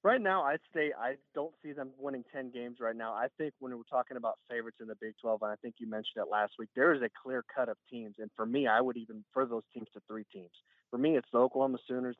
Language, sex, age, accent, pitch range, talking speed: English, male, 20-39, American, 110-130 Hz, 280 wpm